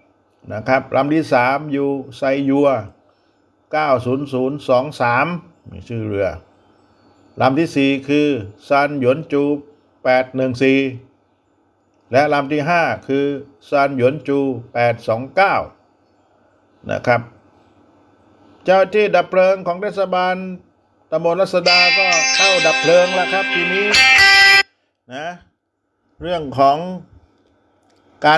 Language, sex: Thai, male